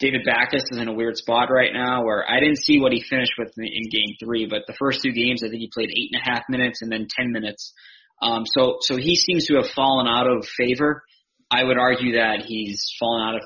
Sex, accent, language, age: male, American, English, 20-39